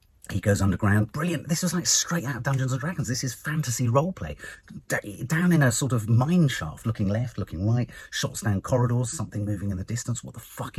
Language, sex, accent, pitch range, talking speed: English, male, British, 95-140 Hz, 230 wpm